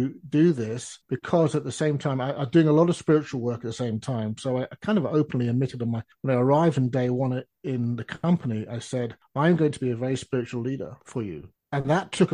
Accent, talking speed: British, 250 wpm